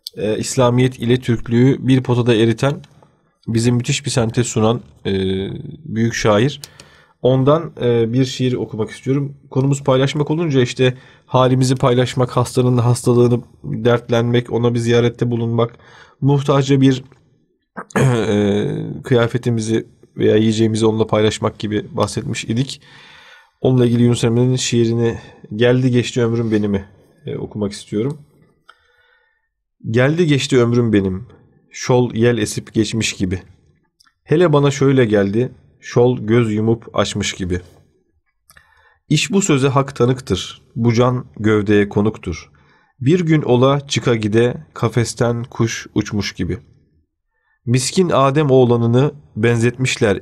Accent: native